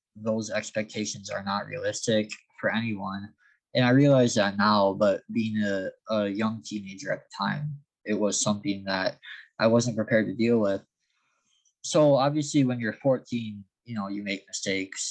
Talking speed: 165 wpm